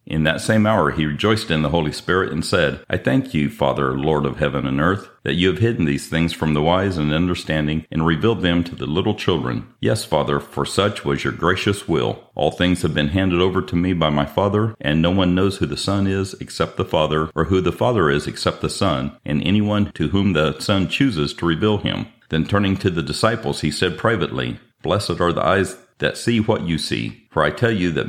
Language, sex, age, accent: English, male, 50-69, American